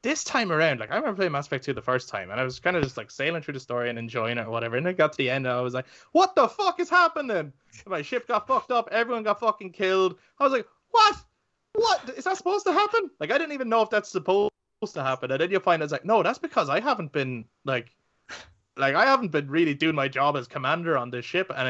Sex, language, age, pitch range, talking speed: male, English, 20-39, 125-180 Hz, 280 wpm